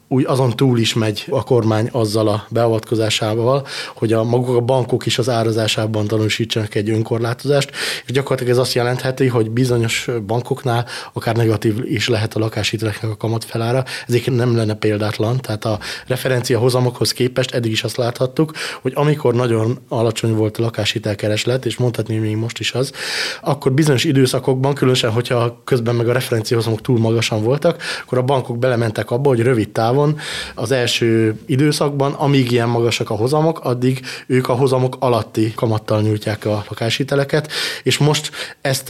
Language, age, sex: Hungarian, 20-39, male